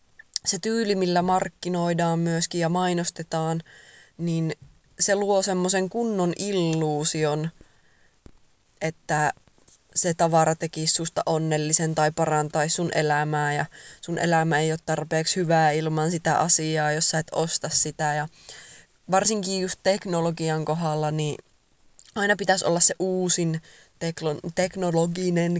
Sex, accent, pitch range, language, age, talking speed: female, native, 160-180 Hz, Finnish, 20-39, 120 wpm